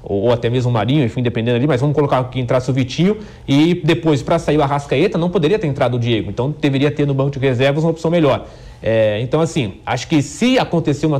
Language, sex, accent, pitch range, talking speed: English, male, Brazilian, 120-165 Hz, 240 wpm